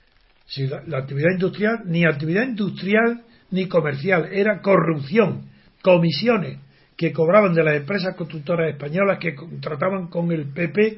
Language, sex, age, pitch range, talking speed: Spanish, male, 60-79, 160-210 Hz, 135 wpm